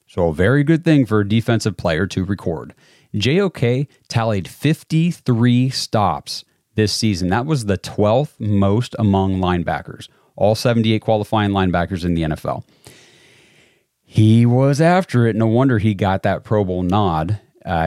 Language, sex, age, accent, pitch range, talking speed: English, male, 30-49, American, 95-120 Hz, 150 wpm